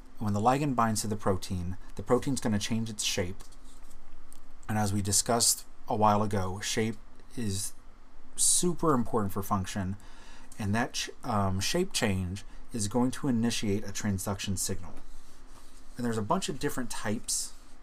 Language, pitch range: English, 100-125 Hz